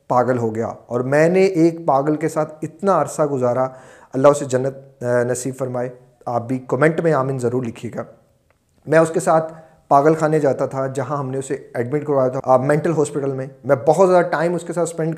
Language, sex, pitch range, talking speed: Urdu, male, 130-165 Hz, 210 wpm